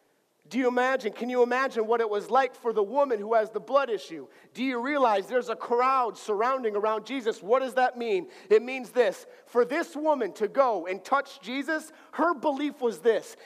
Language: English